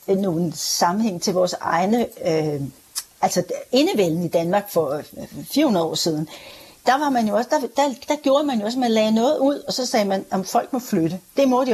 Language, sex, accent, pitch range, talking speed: Danish, female, native, 185-230 Hz, 205 wpm